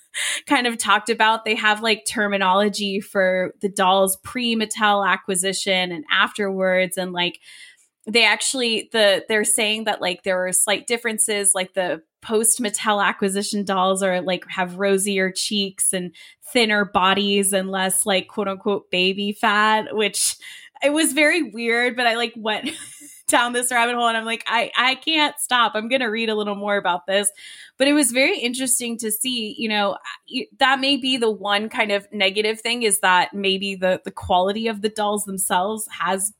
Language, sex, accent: English, female, American